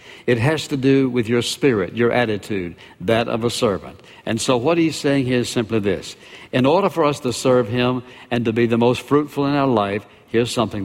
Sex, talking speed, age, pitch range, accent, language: male, 220 wpm, 60-79, 110-140 Hz, American, English